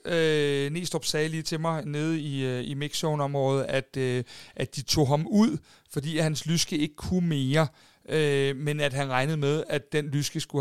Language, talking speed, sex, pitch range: Danish, 190 wpm, male, 140-160 Hz